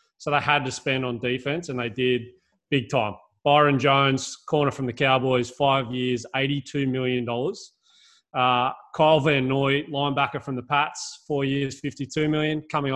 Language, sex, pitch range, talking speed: English, male, 125-150 Hz, 165 wpm